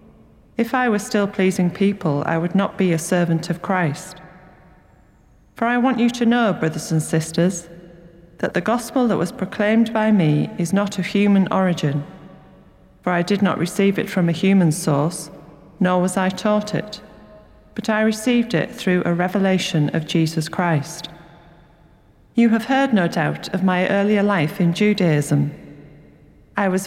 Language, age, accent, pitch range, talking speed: English, 40-59, British, 165-200 Hz, 165 wpm